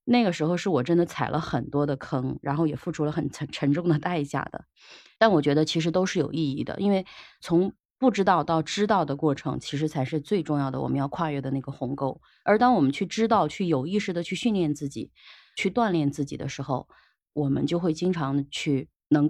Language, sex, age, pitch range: Chinese, female, 20-39, 140-175 Hz